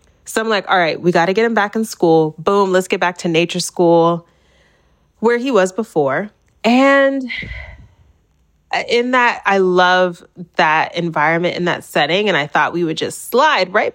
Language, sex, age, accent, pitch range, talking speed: English, female, 30-49, American, 155-220 Hz, 180 wpm